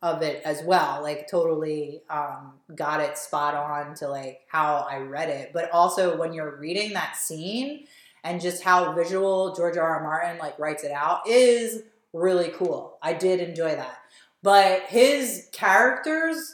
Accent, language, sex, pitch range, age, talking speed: American, English, female, 160-205 Hz, 30-49, 165 wpm